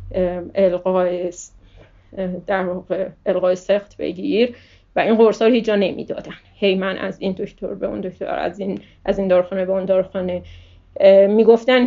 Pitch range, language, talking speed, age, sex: 185-220 Hz, Persian, 145 wpm, 30-49, female